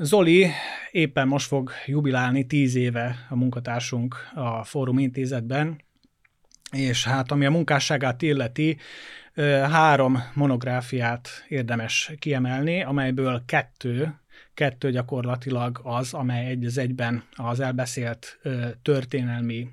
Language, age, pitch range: Hungarian, 30-49, 125-150 Hz